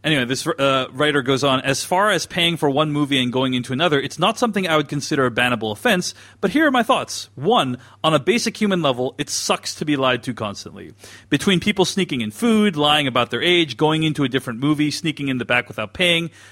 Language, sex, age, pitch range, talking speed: English, male, 30-49, 125-175 Hz, 235 wpm